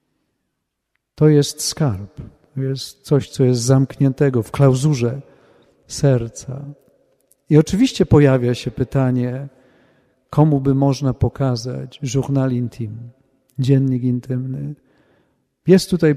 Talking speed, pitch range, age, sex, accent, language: 100 wpm, 130-145 Hz, 40-59, male, native, Polish